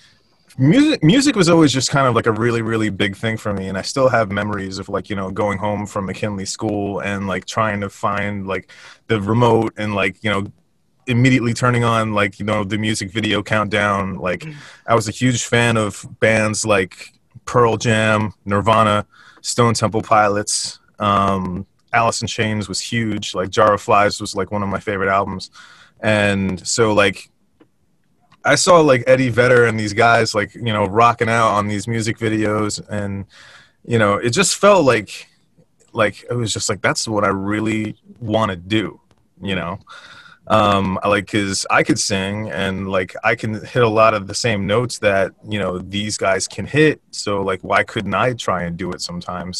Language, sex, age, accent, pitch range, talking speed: English, male, 30-49, American, 100-115 Hz, 190 wpm